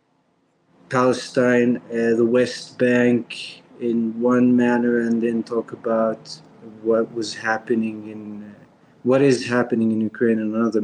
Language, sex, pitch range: English, male, 110-125 Hz